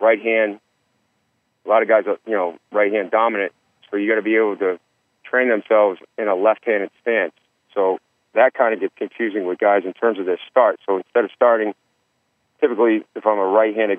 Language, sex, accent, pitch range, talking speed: English, male, American, 100-115 Hz, 195 wpm